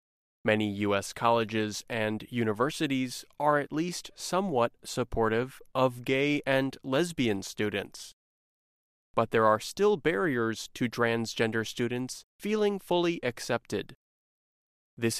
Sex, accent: male, American